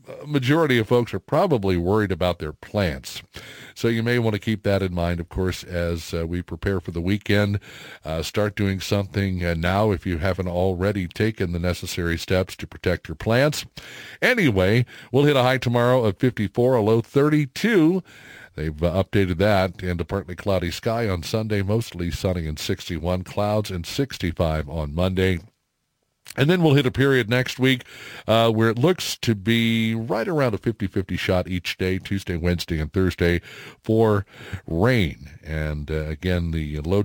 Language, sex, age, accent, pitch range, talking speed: English, male, 50-69, American, 85-110 Hz, 175 wpm